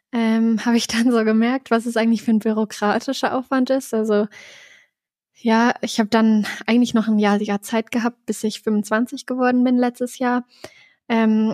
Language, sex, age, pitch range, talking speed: German, female, 20-39, 215-240 Hz, 175 wpm